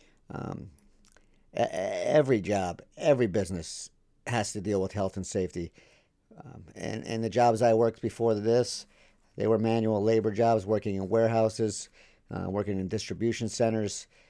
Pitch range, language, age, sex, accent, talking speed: 100-115 Hz, English, 50-69, male, American, 145 wpm